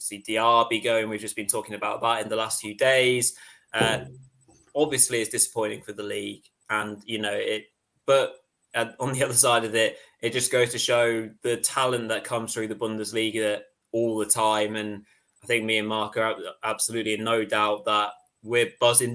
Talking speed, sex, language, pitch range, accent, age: 195 wpm, male, English, 110-125 Hz, British, 10-29